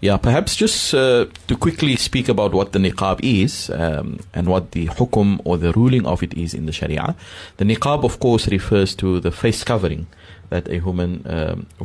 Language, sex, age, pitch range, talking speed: English, male, 30-49, 90-110 Hz, 200 wpm